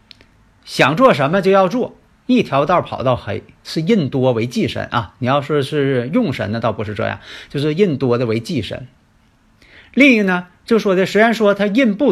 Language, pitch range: Chinese, 115-170 Hz